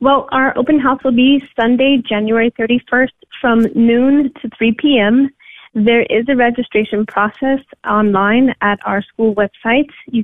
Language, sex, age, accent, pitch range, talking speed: English, female, 30-49, American, 200-230 Hz, 145 wpm